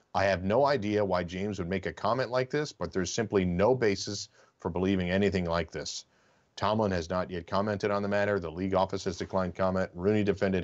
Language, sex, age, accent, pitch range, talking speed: English, male, 40-59, American, 95-110 Hz, 215 wpm